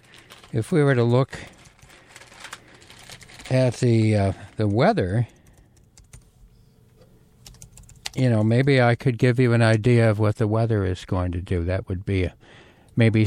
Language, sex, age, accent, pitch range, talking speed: English, male, 60-79, American, 110-130 Hz, 145 wpm